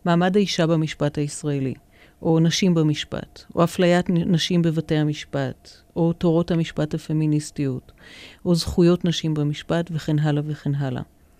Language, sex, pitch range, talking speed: Hebrew, female, 160-190 Hz, 125 wpm